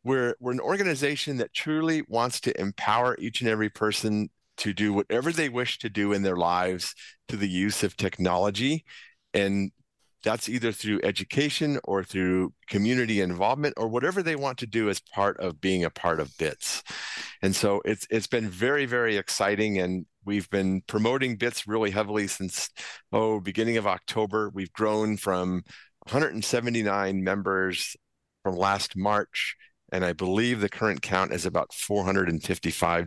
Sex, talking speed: male, 160 wpm